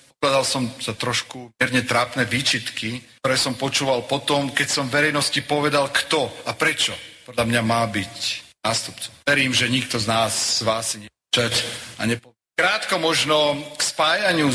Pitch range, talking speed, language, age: 125-155 Hz, 155 wpm, Slovak, 40-59